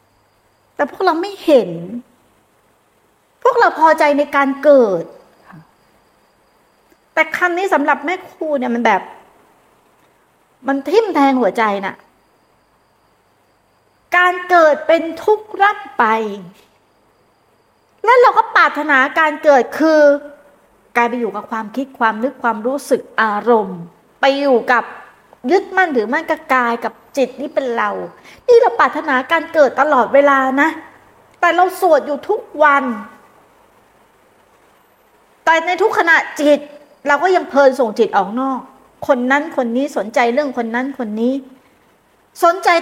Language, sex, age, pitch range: Thai, female, 60-79, 235-320 Hz